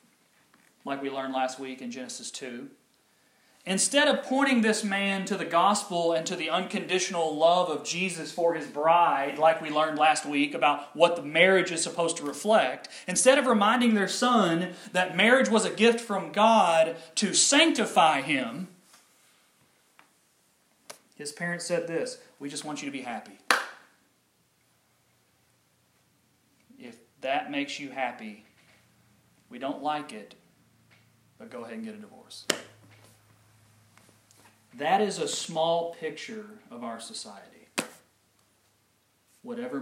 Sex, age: male, 30-49